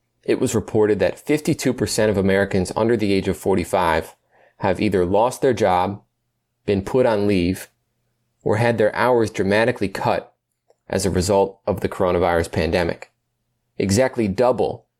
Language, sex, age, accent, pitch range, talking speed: English, male, 30-49, American, 100-120 Hz, 145 wpm